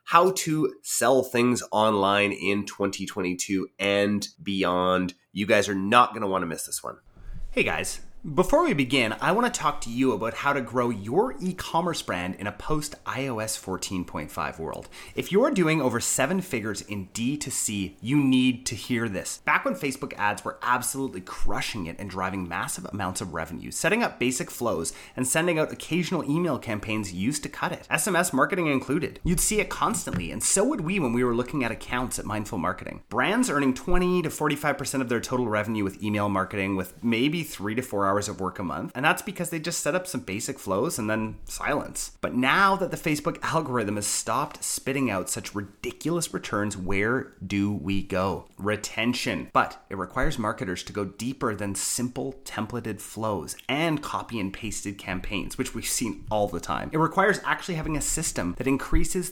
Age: 30-49